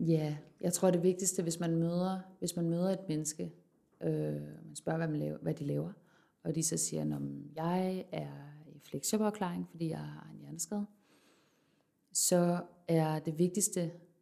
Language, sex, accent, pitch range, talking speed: Danish, female, native, 150-180 Hz, 175 wpm